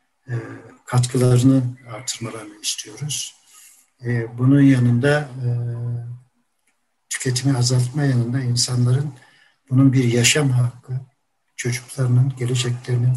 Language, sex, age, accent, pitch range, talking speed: Turkish, male, 60-79, native, 120-135 Hz, 80 wpm